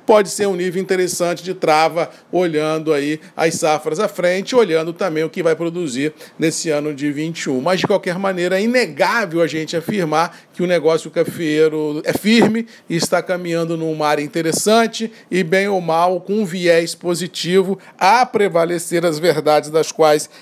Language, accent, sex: Portuguese, Brazilian, male